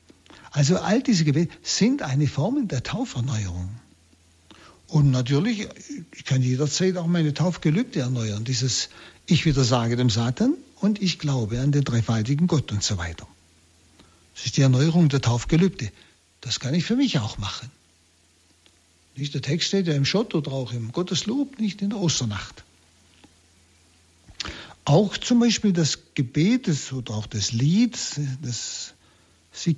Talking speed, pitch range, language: 145 wpm, 115-175 Hz, German